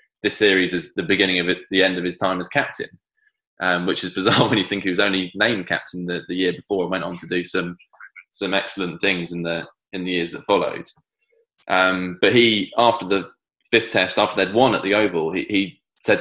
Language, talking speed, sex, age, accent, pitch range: English, 230 wpm, male, 20-39, British, 90-100 Hz